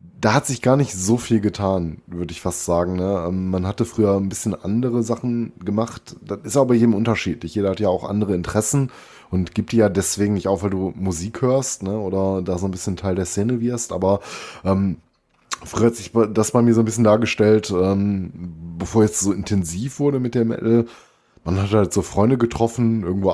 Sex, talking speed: male, 210 wpm